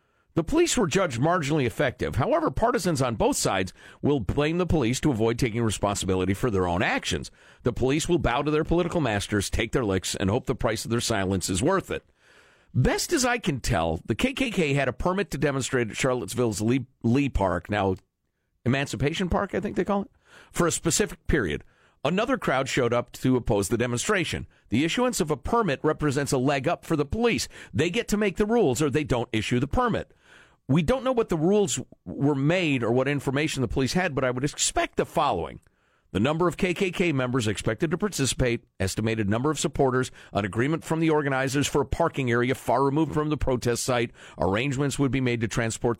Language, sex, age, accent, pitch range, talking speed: English, male, 50-69, American, 110-165 Hz, 205 wpm